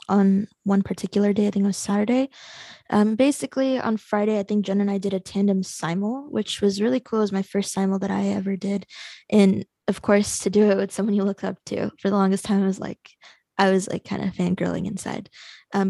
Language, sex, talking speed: English, female, 235 wpm